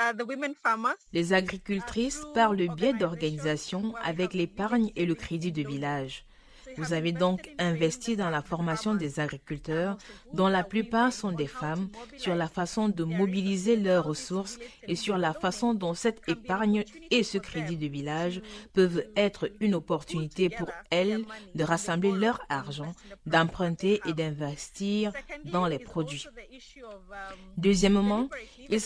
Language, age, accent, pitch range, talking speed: English, 40-59, French, 165-210 Hz, 135 wpm